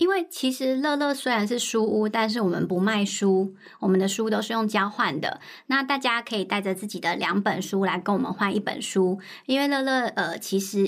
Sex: male